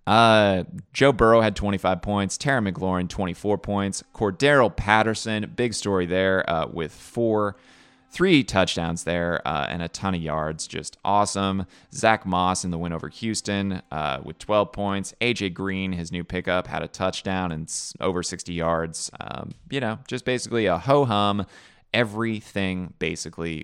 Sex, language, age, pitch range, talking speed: male, English, 20-39, 85-110 Hz, 155 wpm